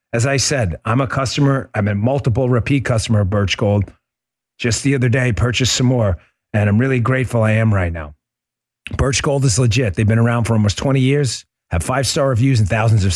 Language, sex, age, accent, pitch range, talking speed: English, male, 40-59, American, 105-130 Hz, 215 wpm